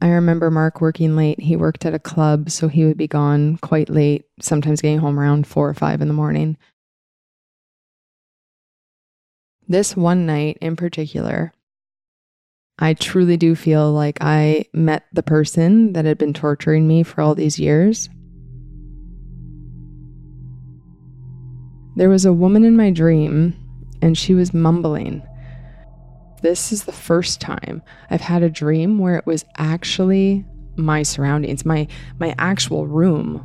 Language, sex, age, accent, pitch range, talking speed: English, female, 20-39, American, 130-170 Hz, 145 wpm